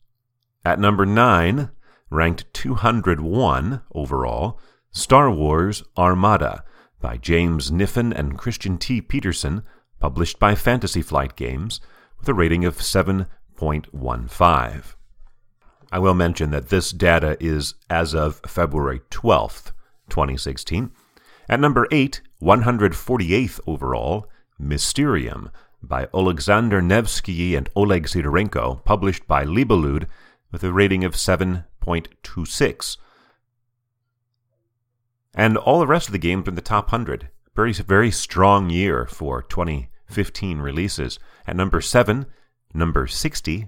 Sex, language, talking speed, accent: male, English, 115 wpm, American